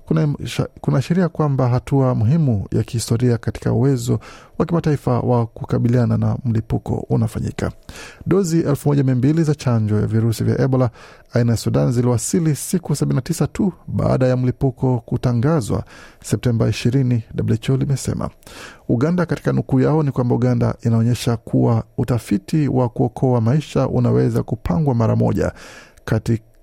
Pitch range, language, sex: 115-140 Hz, Swahili, male